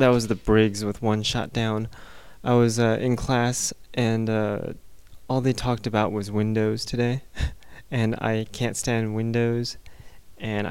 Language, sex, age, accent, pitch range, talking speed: English, male, 20-39, American, 105-120 Hz, 155 wpm